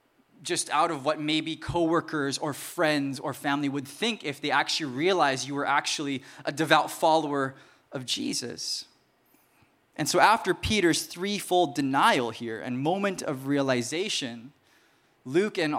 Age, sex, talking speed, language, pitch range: 20-39, male, 140 wpm, English, 130-175 Hz